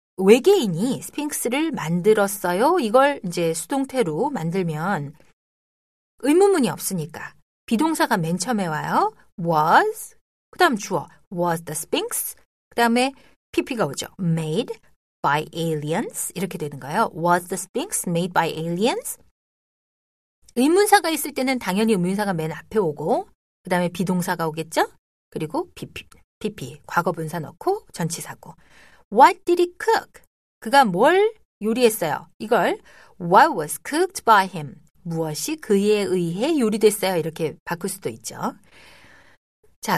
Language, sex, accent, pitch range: Korean, female, native, 170-280 Hz